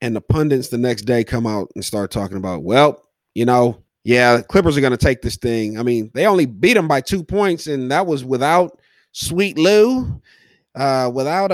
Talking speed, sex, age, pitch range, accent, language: 210 wpm, male, 30-49, 125-175 Hz, American, English